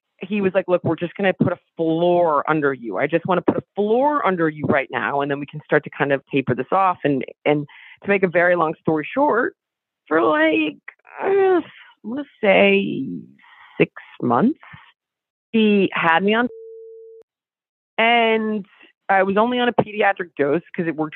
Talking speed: 185 wpm